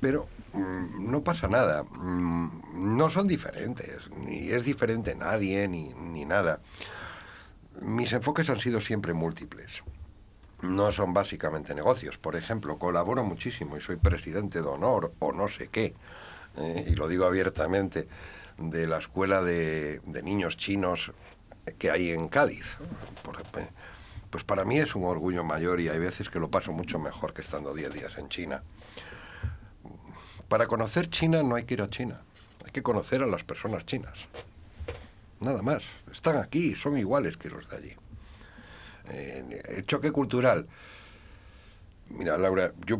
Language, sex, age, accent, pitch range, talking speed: Spanish, male, 60-79, Spanish, 90-110 Hz, 150 wpm